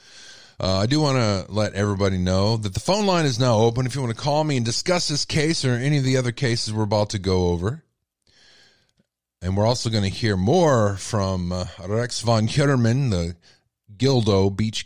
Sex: male